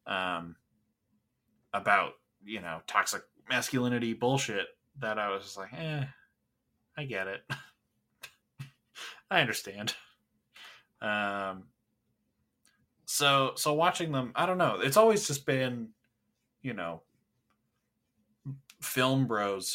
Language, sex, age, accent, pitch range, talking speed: English, male, 20-39, American, 100-135 Hz, 105 wpm